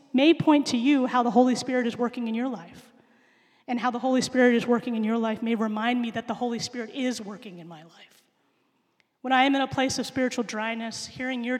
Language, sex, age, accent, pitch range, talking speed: English, female, 30-49, American, 205-240 Hz, 240 wpm